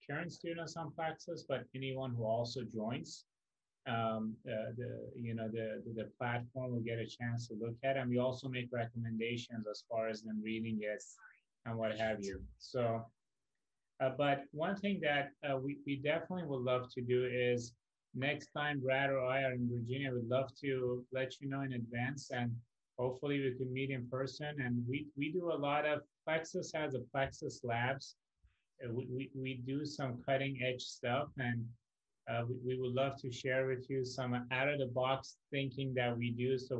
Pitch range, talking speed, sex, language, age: 120-140 Hz, 190 wpm, male, English, 30-49